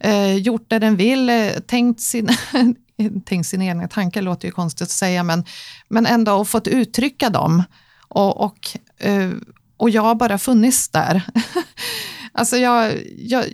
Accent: native